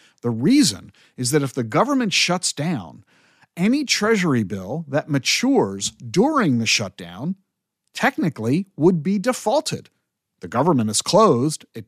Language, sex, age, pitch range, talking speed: English, male, 50-69, 120-165 Hz, 130 wpm